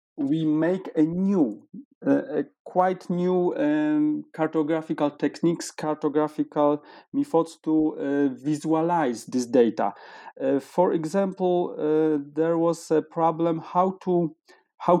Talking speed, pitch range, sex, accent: 115 wpm, 150-210 Hz, male, Polish